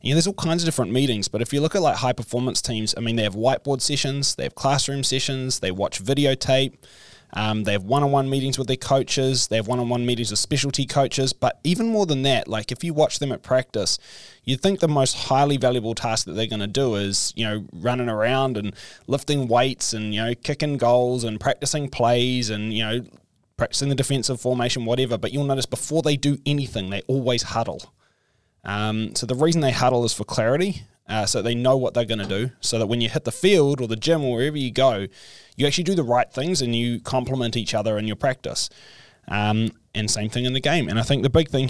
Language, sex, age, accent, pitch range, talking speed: English, male, 20-39, Australian, 115-140 Hz, 235 wpm